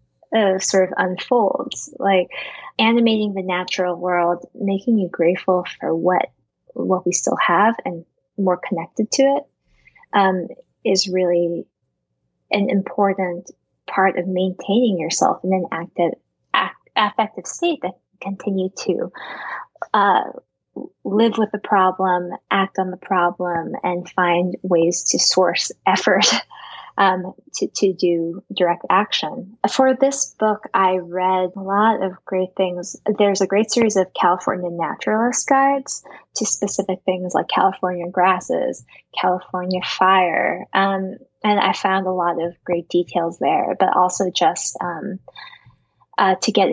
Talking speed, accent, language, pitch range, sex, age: 135 wpm, American, English, 175-200 Hz, female, 10-29